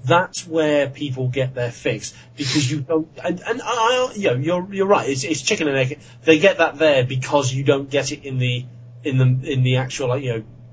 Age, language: 30-49, English